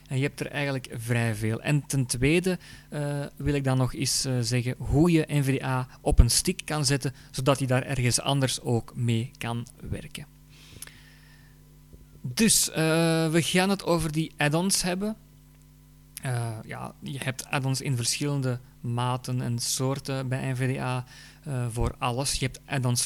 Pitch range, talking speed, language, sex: 125-150 Hz, 160 wpm, Dutch, male